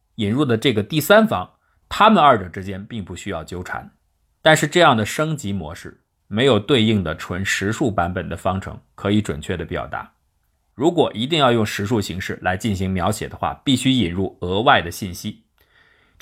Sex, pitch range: male, 90-115 Hz